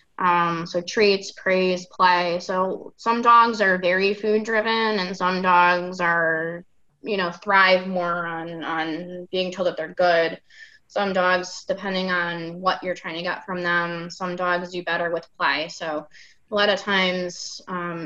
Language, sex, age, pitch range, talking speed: English, female, 20-39, 170-195 Hz, 165 wpm